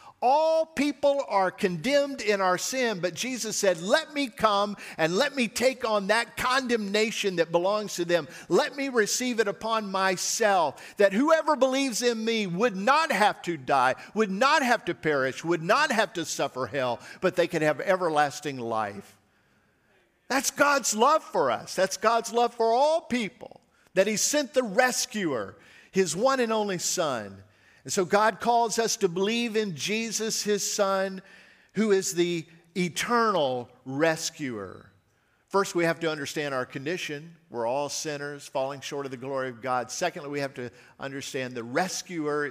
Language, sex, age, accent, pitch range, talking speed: English, male, 50-69, American, 135-220 Hz, 165 wpm